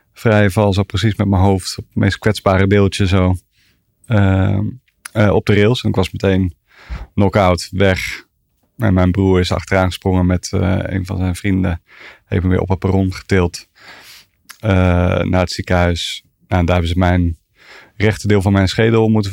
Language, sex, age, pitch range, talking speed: Dutch, male, 30-49, 90-105 Hz, 175 wpm